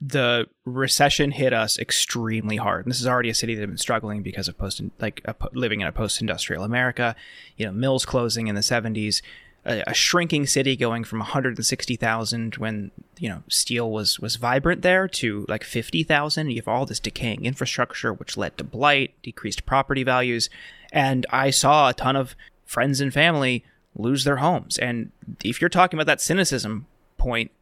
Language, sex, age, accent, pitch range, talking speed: English, male, 20-39, American, 115-155 Hz, 185 wpm